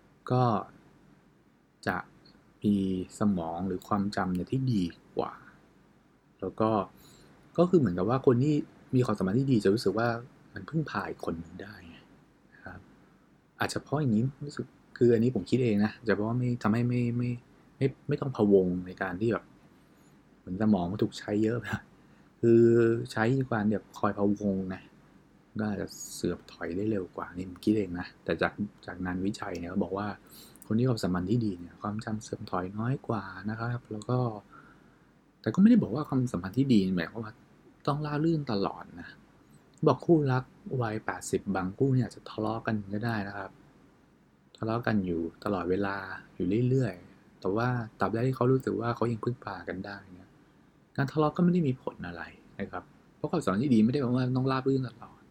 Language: English